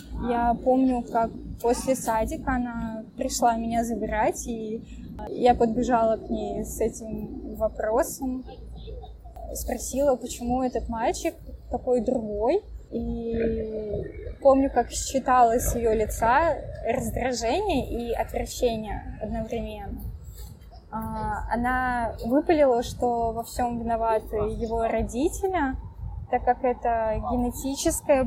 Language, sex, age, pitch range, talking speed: Russian, female, 20-39, 220-255 Hz, 95 wpm